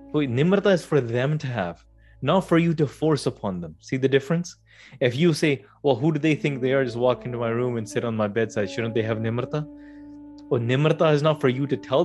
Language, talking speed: English, 245 wpm